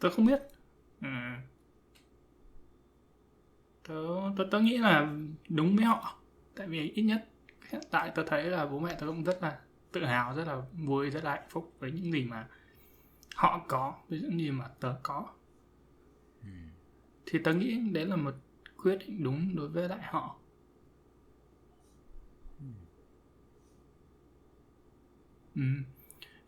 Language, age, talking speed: Vietnamese, 20-39, 135 wpm